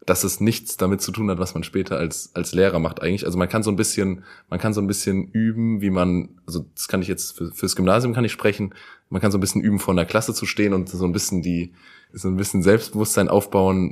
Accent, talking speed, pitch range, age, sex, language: German, 265 wpm, 90-100 Hz, 20-39, male, German